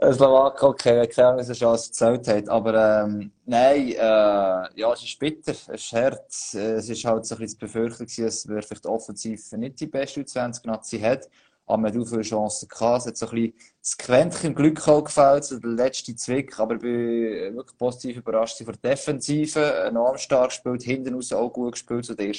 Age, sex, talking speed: 20-39, male, 225 wpm